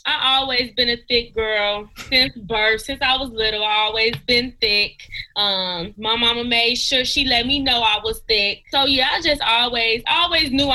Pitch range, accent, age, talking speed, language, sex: 200-240 Hz, American, 20-39, 195 wpm, English, female